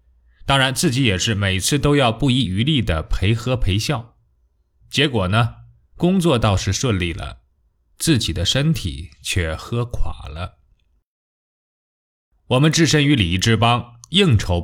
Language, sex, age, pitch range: Chinese, male, 20-39, 85-130 Hz